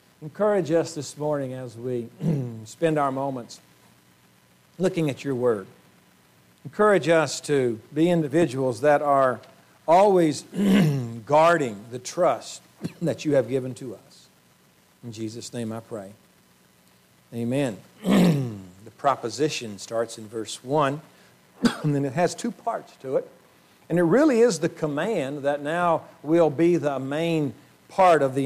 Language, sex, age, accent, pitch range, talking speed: English, male, 50-69, American, 125-175 Hz, 135 wpm